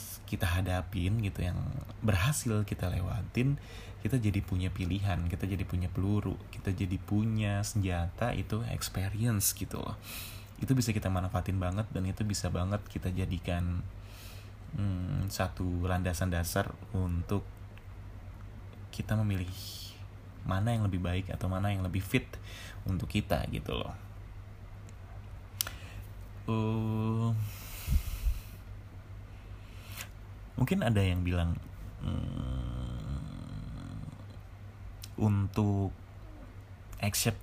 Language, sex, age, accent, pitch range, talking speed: Indonesian, male, 20-39, native, 95-105 Hz, 100 wpm